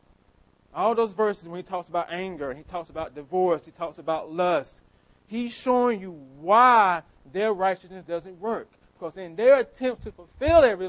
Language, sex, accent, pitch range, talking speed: English, male, American, 115-170 Hz, 175 wpm